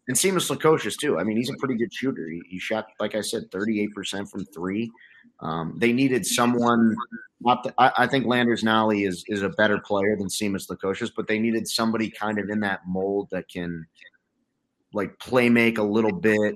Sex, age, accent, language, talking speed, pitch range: male, 30-49, American, English, 205 wpm, 95-115 Hz